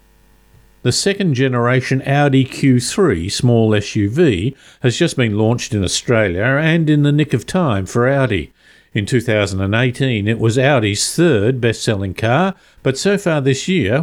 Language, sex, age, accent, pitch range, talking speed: English, male, 50-69, Australian, 110-145 Hz, 140 wpm